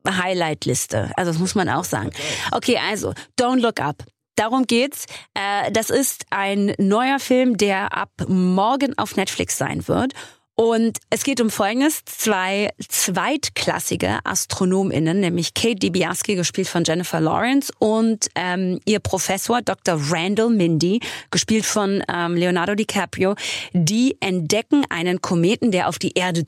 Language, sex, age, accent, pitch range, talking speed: German, female, 30-49, German, 180-230 Hz, 140 wpm